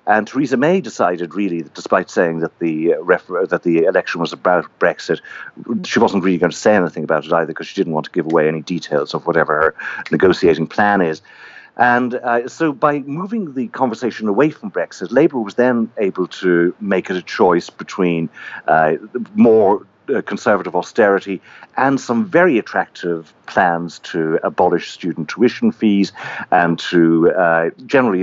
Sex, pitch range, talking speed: male, 90-120 Hz, 165 wpm